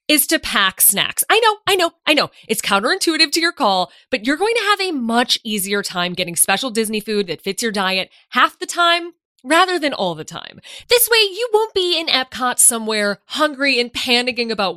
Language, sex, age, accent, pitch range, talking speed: English, female, 20-39, American, 205-325 Hz, 210 wpm